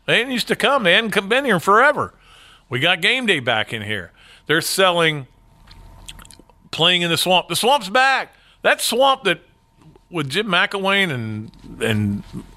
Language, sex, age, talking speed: English, male, 50-69, 160 wpm